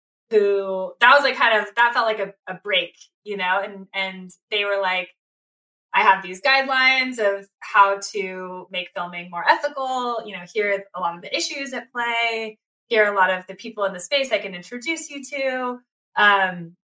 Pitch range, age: 190-250 Hz, 20-39